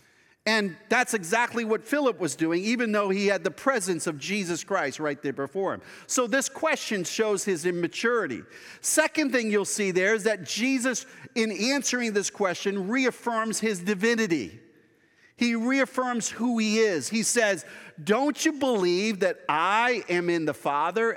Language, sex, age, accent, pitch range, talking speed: English, male, 50-69, American, 175-245 Hz, 160 wpm